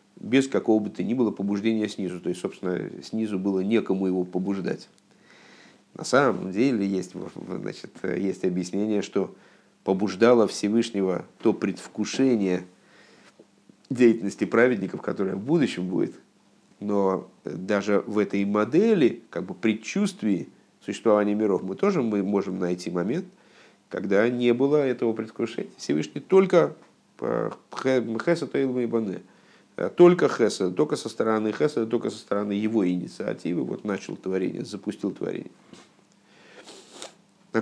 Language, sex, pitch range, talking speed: Russian, male, 95-120 Hz, 120 wpm